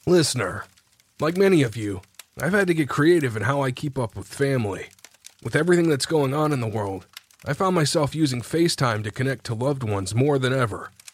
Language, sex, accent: English, male, American